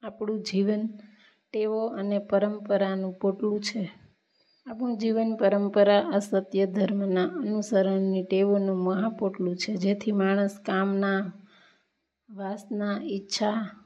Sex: female